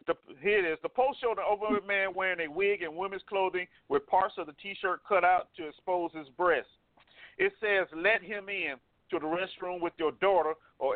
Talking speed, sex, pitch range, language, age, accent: 210 wpm, male, 165-220 Hz, English, 40-59, American